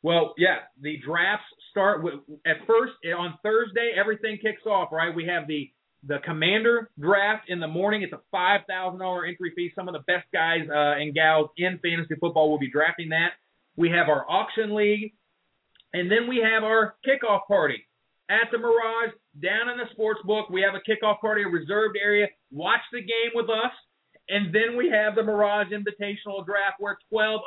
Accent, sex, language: American, male, English